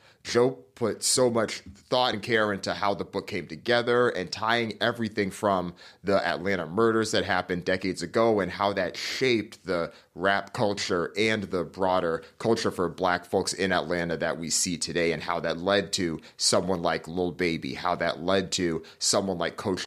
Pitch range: 90-110 Hz